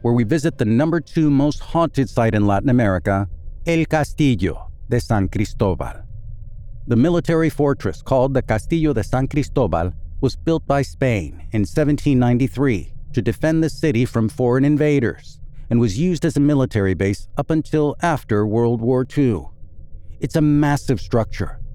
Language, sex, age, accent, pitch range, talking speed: English, male, 50-69, American, 100-140 Hz, 155 wpm